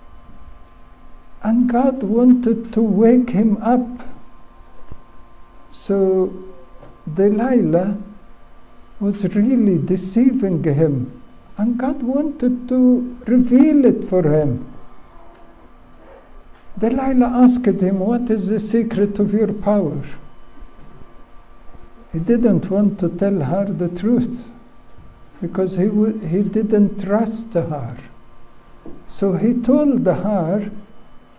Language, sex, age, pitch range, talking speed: English, male, 60-79, 150-225 Hz, 95 wpm